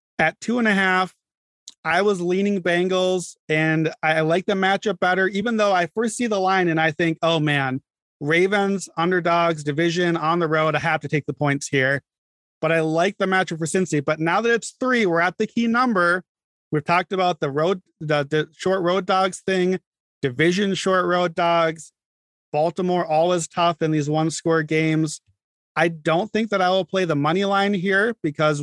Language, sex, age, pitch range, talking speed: English, male, 30-49, 155-190 Hz, 195 wpm